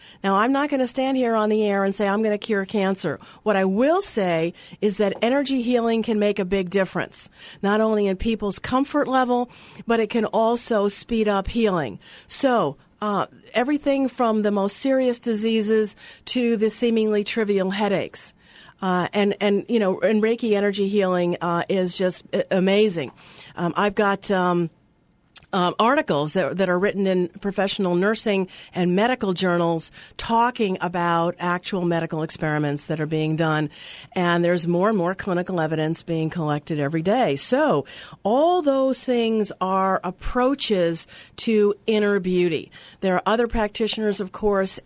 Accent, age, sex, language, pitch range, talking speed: American, 50-69, female, English, 175-220 Hz, 160 wpm